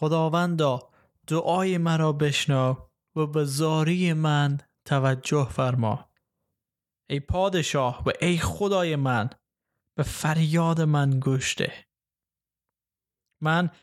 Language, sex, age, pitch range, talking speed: Persian, male, 20-39, 135-155 Hz, 90 wpm